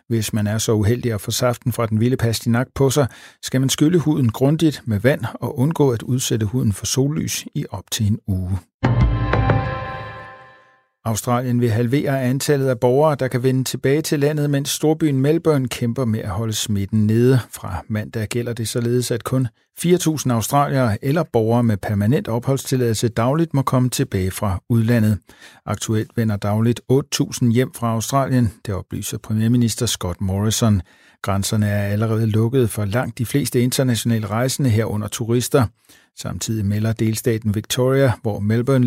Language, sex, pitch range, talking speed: Danish, male, 110-130 Hz, 160 wpm